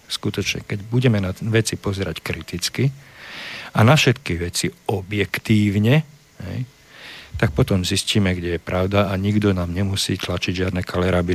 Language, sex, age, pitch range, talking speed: Slovak, male, 50-69, 95-115 Hz, 130 wpm